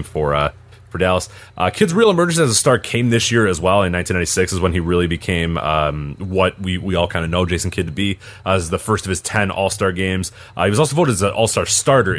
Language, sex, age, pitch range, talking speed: English, male, 30-49, 90-115 Hz, 260 wpm